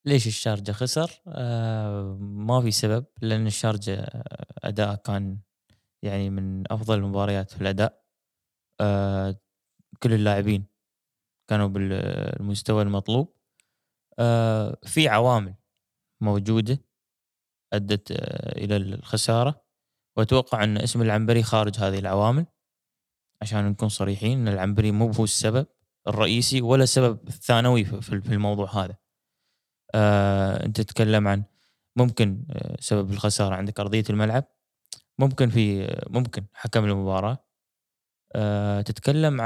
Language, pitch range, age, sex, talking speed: Arabic, 105-125 Hz, 20-39, male, 100 wpm